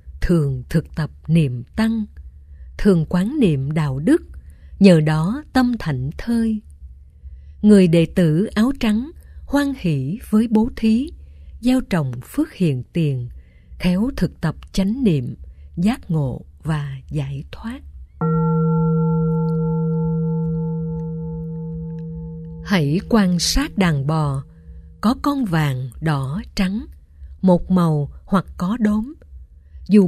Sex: female